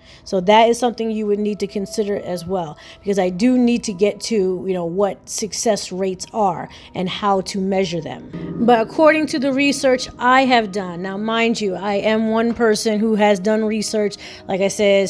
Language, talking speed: English, 205 wpm